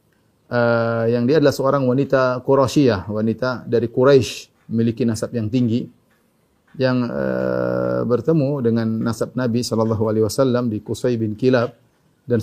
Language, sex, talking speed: Indonesian, male, 125 wpm